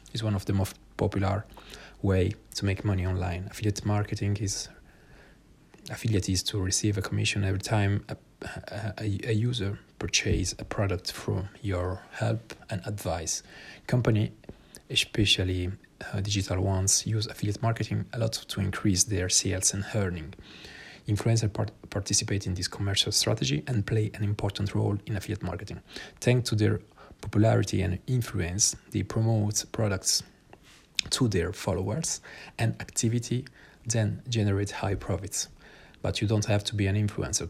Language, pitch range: Italian, 95-110 Hz